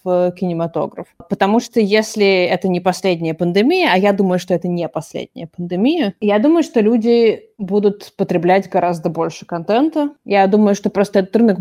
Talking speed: 160 wpm